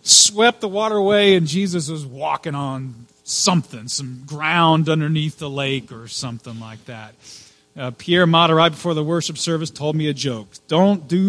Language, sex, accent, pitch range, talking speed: English, male, American, 135-225 Hz, 175 wpm